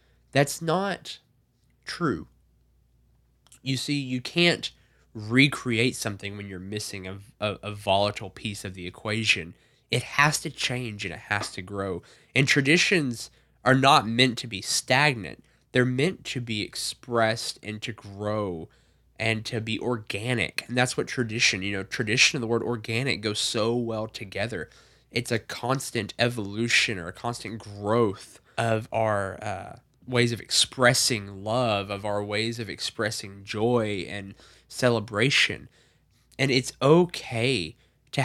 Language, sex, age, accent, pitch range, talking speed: English, male, 10-29, American, 105-130 Hz, 145 wpm